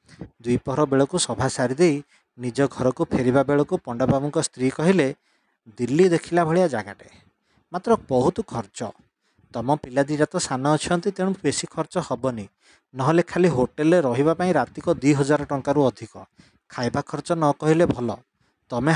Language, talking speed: English, 135 wpm